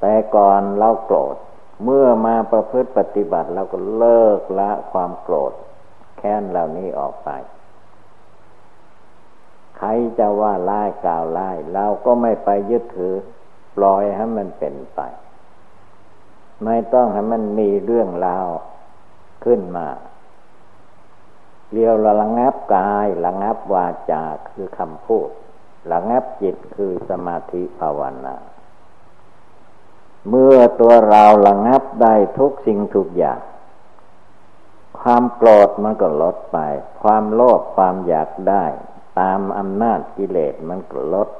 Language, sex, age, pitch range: Thai, male, 60-79, 100-115 Hz